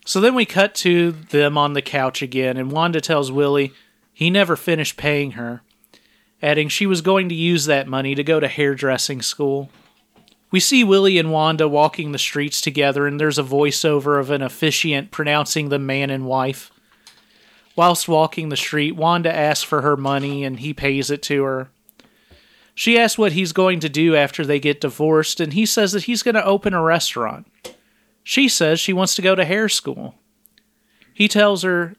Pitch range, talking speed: 140-180 Hz, 190 wpm